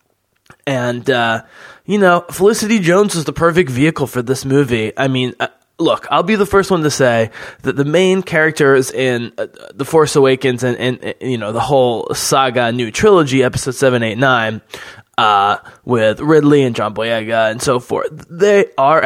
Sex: male